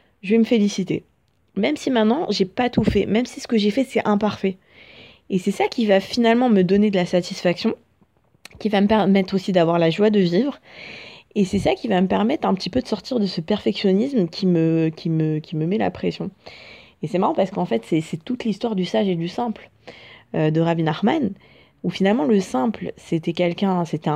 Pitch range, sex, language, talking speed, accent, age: 175-220 Hz, female, French, 225 wpm, French, 20-39